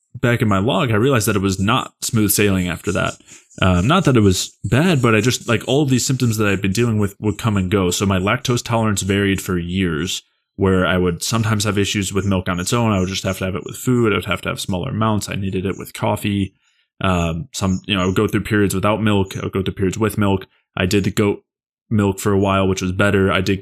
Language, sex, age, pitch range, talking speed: English, male, 20-39, 95-110 Hz, 270 wpm